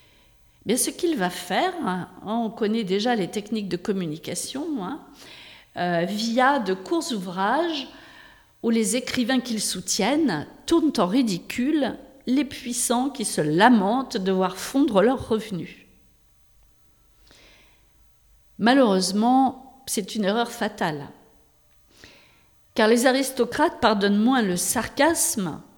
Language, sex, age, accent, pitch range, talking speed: French, female, 50-69, French, 185-255 Hz, 115 wpm